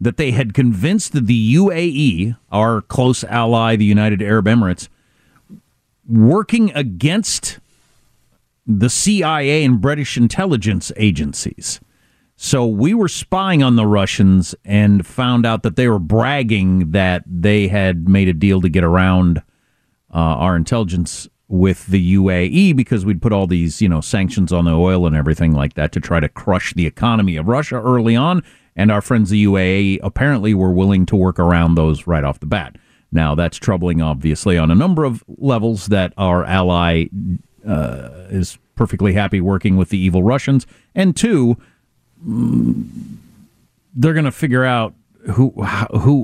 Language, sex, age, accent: English, male, 50-69, American